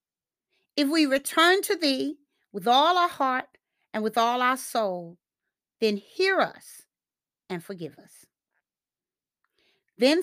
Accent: American